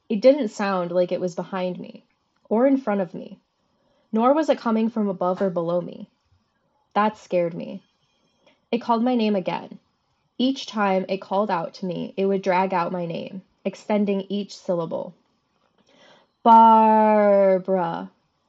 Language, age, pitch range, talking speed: English, 10-29, 185-240 Hz, 155 wpm